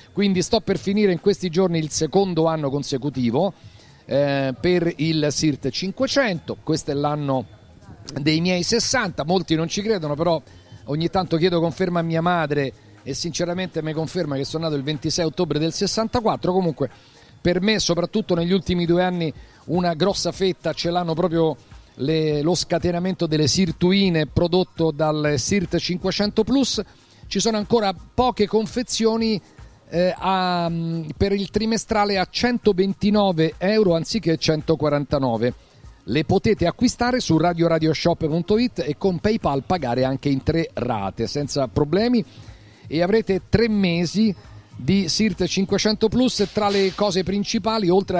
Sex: male